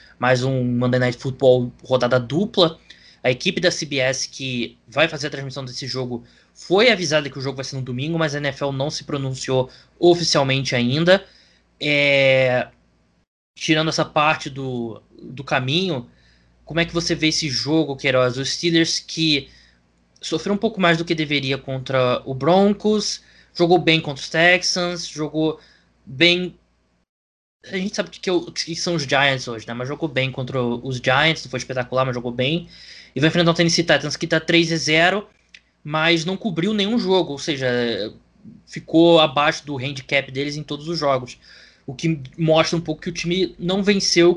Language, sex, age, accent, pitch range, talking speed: Portuguese, male, 20-39, Brazilian, 130-170 Hz, 175 wpm